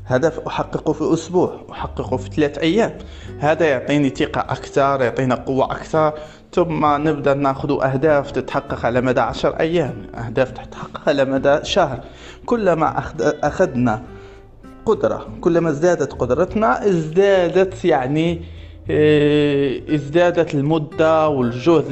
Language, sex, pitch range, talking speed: Arabic, male, 125-170 Hz, 110 wpm